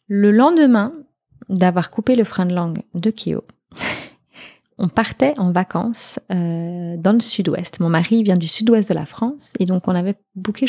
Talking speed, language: 175 wpm, English